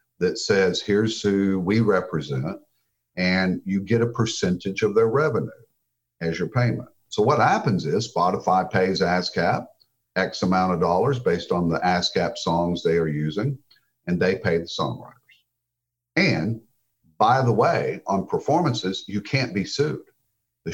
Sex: male